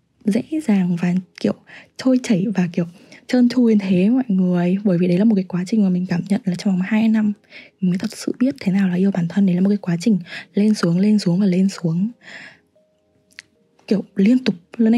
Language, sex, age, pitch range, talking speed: Vietnamese, female, 20-39, 180-225 Hz, 235 wpm